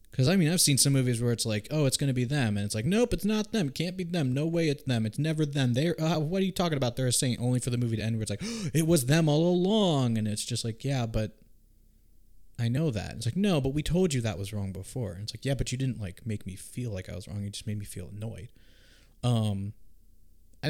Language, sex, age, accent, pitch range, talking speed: English, male, 20-39, American, 100-130 Hz, 300 wpm